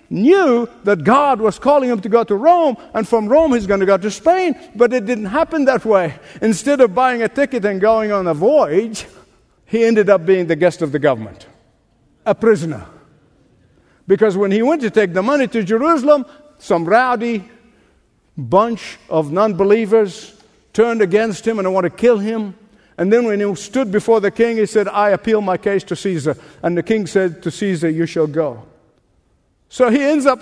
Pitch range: 190-265 Hz